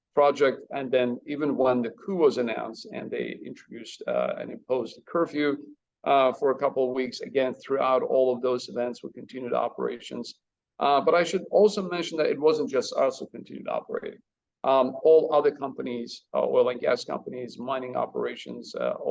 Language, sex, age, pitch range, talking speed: English, male, 50-69, 125-155 Hz, 185 wpm